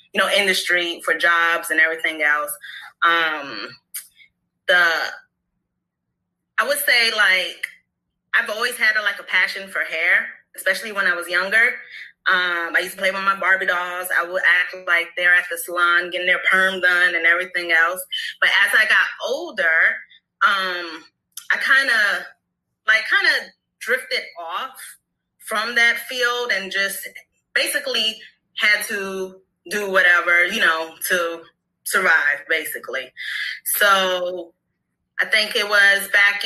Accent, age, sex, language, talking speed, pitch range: American, 20-39, female, English, 145 wpm, 175-205 Hz